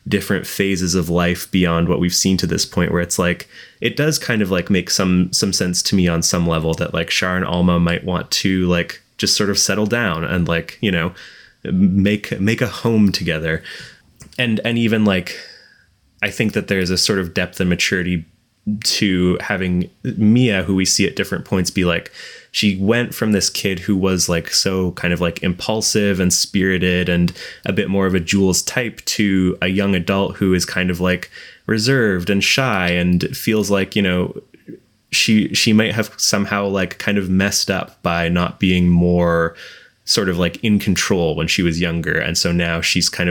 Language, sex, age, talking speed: English, male, 20-39, 200 wpm